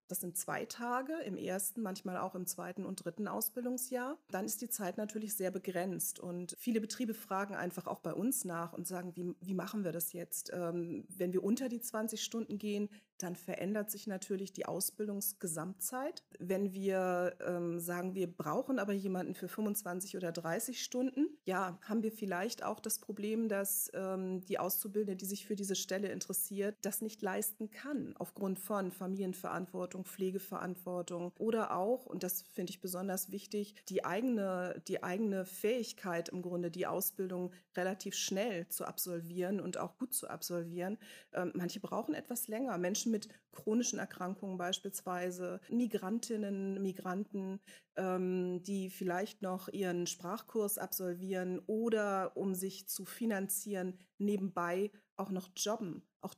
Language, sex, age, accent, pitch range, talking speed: German, female, 30-49, German, 180-210 Hz, 150 wpm